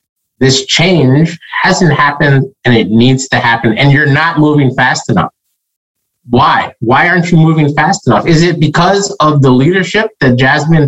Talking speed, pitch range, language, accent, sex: 165 wpm, 120-155 Hz, English, American, male